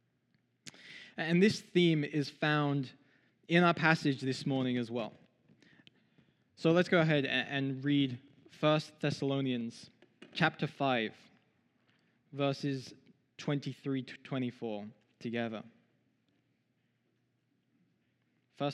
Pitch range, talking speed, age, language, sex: 130-155 Hz, 90 wpm, 20-39, English, male